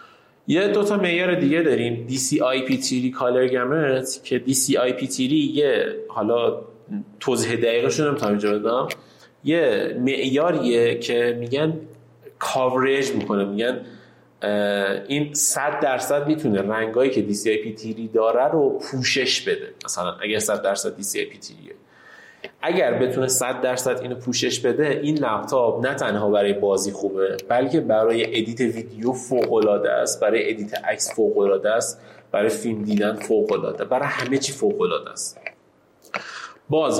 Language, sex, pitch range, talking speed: Persian, male, 120-180 Hz, 130 wpm